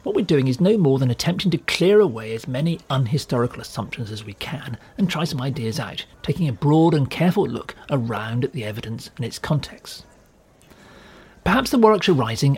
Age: 40-59